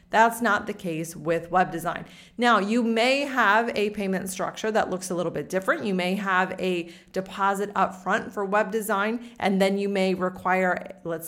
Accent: American